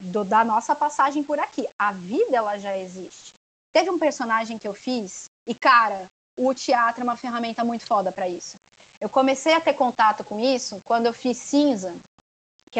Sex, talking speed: female, 185 wpm